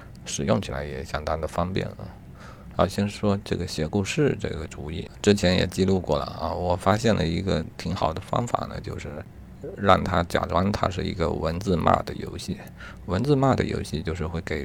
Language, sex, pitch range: Chinese, male, 80-100 Hz